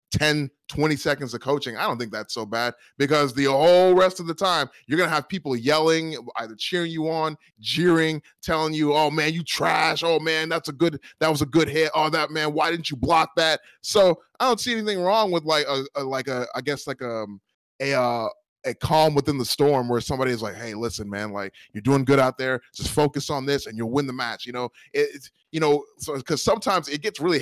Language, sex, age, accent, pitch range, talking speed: English, male, 20-39, American, 130-160 Hz, 240 wpm